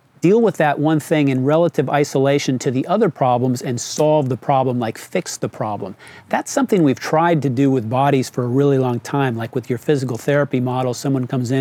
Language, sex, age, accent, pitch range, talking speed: English, male, 40-59, American, 130-155 Hz, 215 wpm